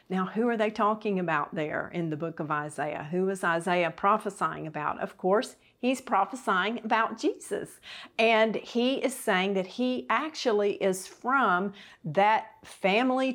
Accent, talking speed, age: American, 155 wpm, 50-69